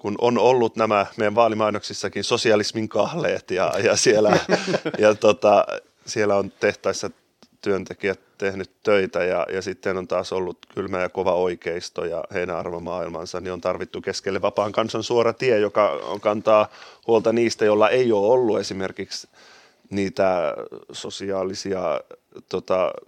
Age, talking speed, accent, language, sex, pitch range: 30-49, 140 wpm, native, Finnish, male, 95-110 Hz